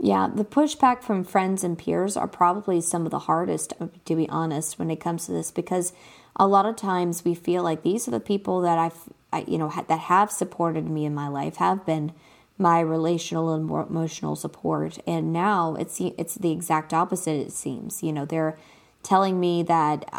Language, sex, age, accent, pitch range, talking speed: English, female, 20-39, American, 160-185 Hz, 205 wpm